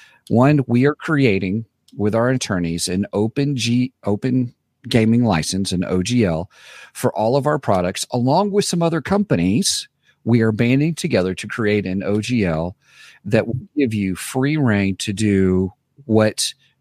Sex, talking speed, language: male, 150 wpm, English